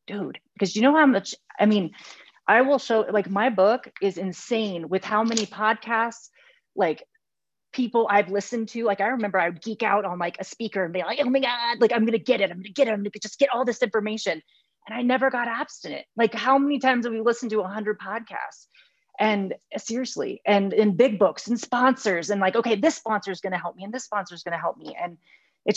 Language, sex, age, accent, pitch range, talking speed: English, female, 30-49, American, 195-245 Hz, 245 wpm